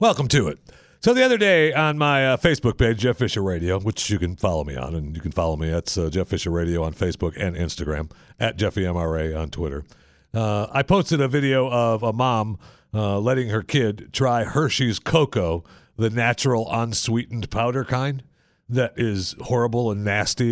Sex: male